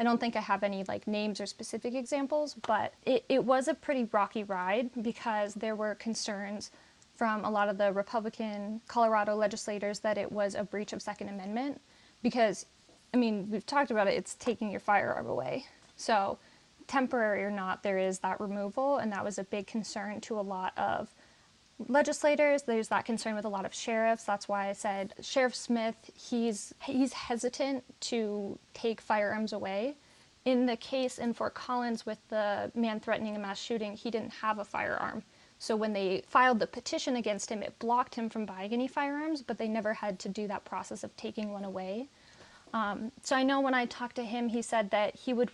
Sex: female